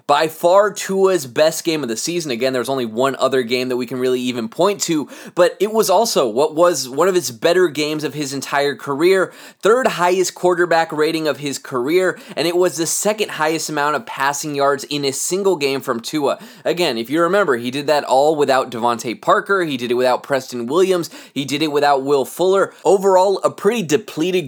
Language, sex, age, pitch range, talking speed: English, male, 20-39, 140-180 Hz, 210 wpm